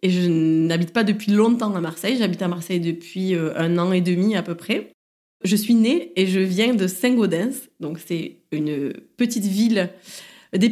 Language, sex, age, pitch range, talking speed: French, female, 20-39, 180-220 Hz, 185 wpm